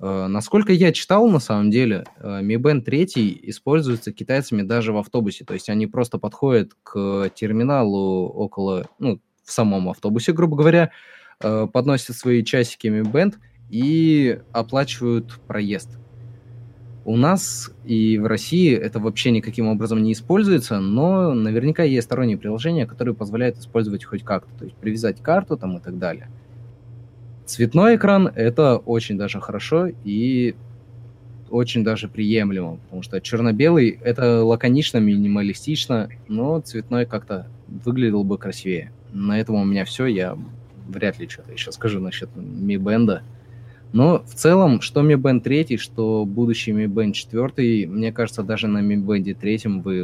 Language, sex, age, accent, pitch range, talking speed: Russian, male, 20-39, native, 105-125 Hz, 145 wpm